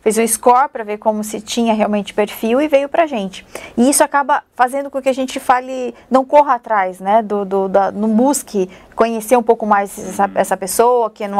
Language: Portuguese